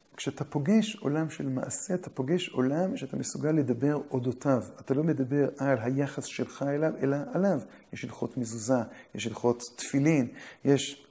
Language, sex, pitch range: Hebrew, male, 125-180 Hz